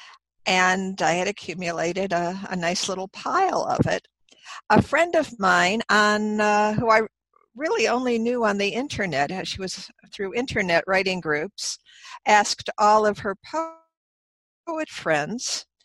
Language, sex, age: English, female, 60-79